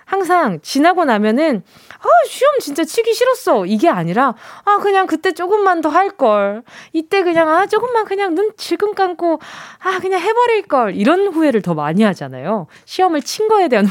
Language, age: Korean, 20-39